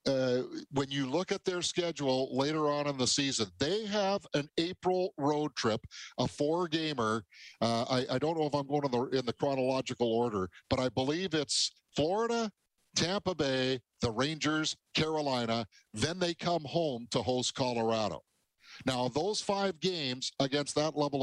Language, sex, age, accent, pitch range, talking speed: English, male, 50-69, American, 120-155 Hz, 160 wpm